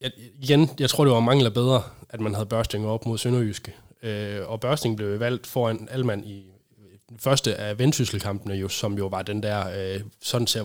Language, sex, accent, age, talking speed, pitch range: Danish, male, native, 20-39, 205 wpm, 105-130 Hz